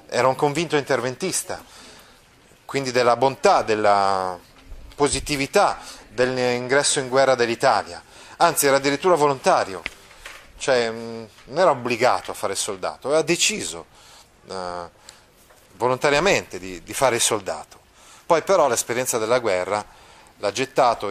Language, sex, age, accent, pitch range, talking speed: Italian, male, 30-49, native, 110-140 Hz, 115 wpm